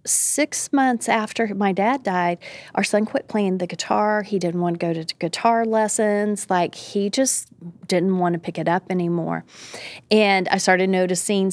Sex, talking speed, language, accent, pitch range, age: female, 175 wpm, English, American, 170-195 Hz, 30-49